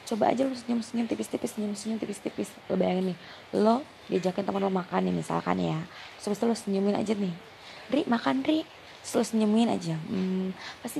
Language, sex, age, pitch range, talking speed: Indonesian, female, 20-39, 165-215 Hz, 170 wpm